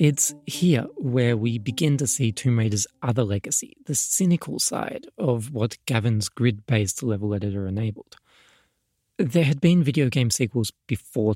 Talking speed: 150 wpm